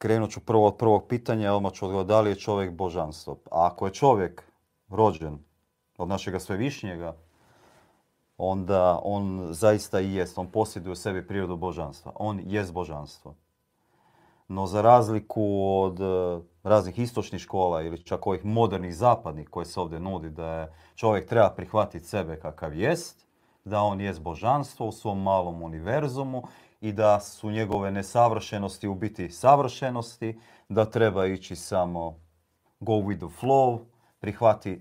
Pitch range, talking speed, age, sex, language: 90-115 Hz, 145 wpm, 40-59, male, Croatian